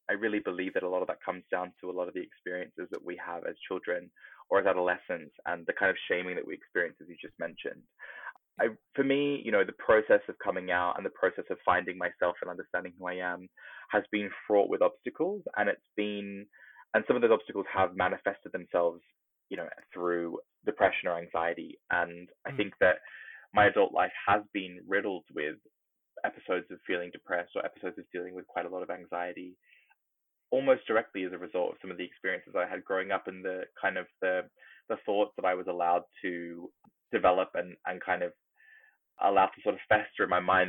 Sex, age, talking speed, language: male, 20-39, 210 wpm, English